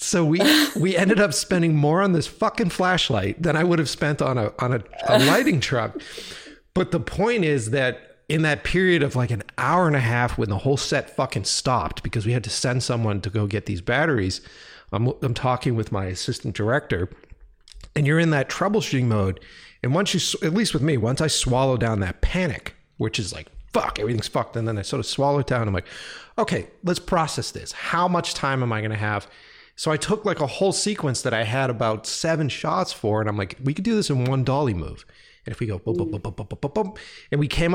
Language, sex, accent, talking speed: English, male, American, 235 wpm